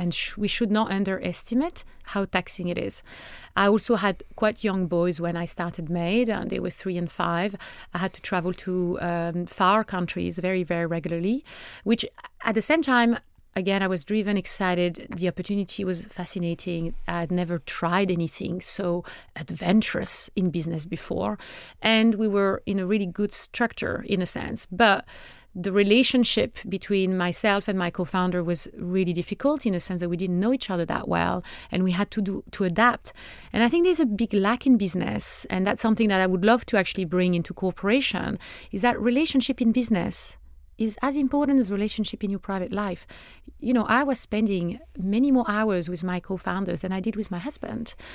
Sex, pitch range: female, 180-230 Hz